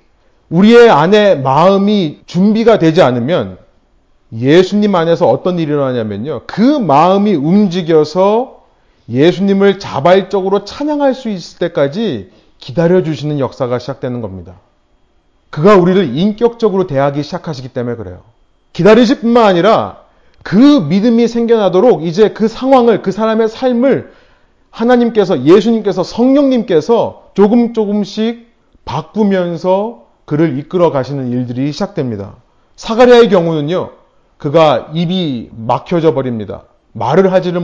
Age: 30-49